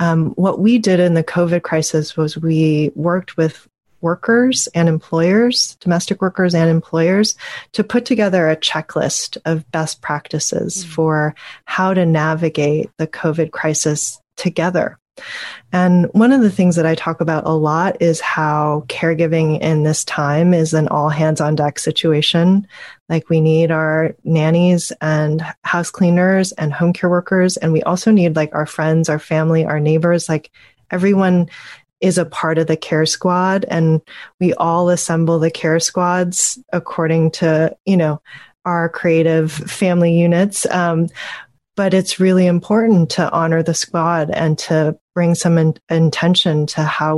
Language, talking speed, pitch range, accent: English, 155 wpm, 155-175 Hz, American